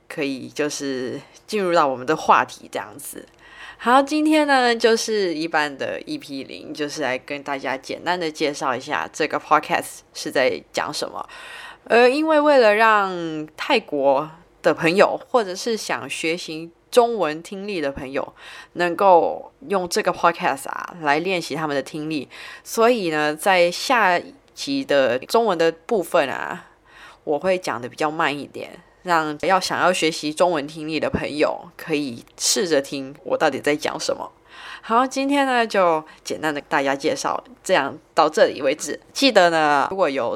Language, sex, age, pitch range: Thai, female, 20-39, 150-225 Hz